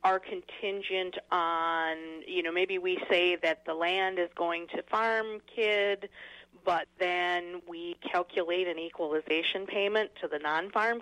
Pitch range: 175-245 Hz